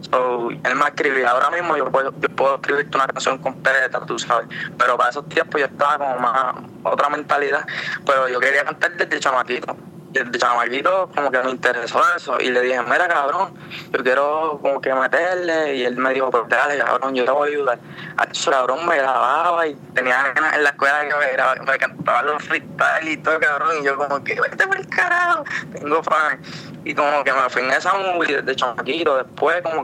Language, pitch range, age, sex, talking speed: Spanish, 130-165 Hz, 20-39, male, 205 wpm